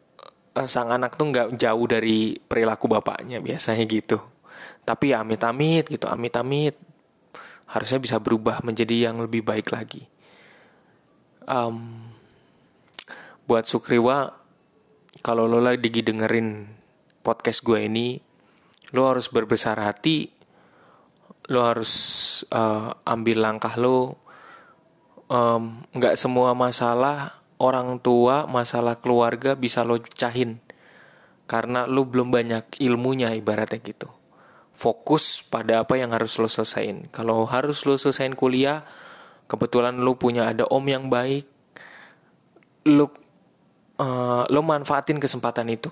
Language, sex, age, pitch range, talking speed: Indonesian, male, 20-39, 115-130 Hz, 110 wpm